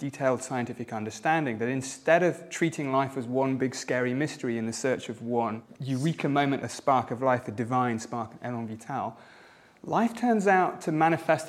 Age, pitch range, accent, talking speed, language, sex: 30-49, 125-160 Hz, British, 180 wpm, English, male